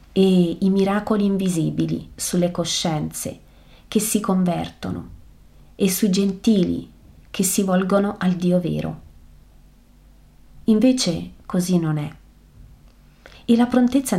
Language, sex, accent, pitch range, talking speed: Italian, female, native, 165-210 Hz, 105 wpm